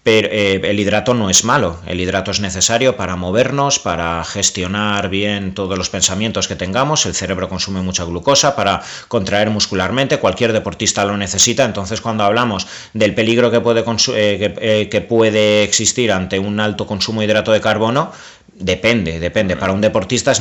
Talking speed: 175 wpm